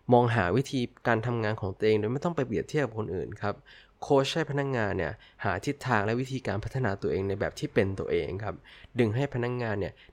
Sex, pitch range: male, 100-130 Hz